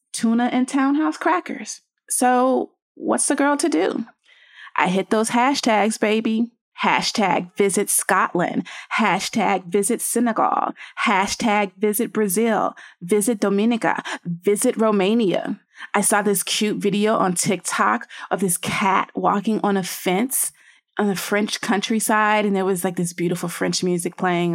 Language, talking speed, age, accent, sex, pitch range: English, 135 wpm, 30-49, American, female, 200-255 Hz